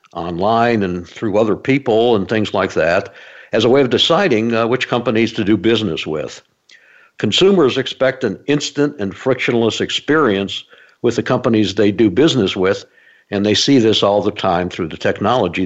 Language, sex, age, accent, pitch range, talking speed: English, male, 60-79, American, 95-125 Hz, 175 wpm